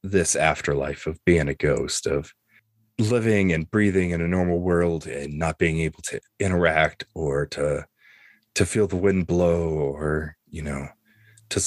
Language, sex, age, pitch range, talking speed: English, male, 30-49, 85-105 Hz, 160 wpm